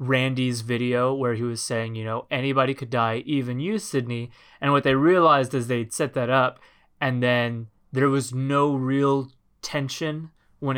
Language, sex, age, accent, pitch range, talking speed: English, male, 20-39, American, 120-145 Hz, 175 wpm